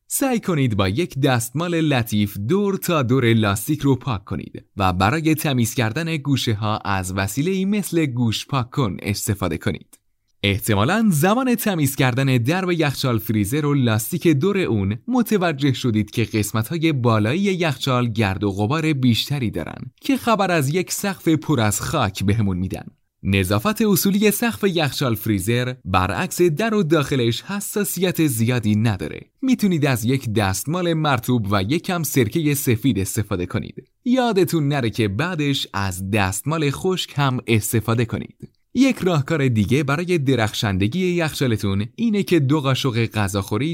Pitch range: 110-165 Hz